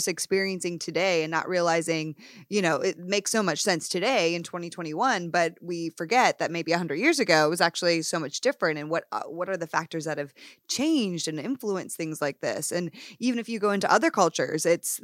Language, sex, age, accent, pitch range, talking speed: English, female, 20-39, American, 165-205 Hz, 210 wpm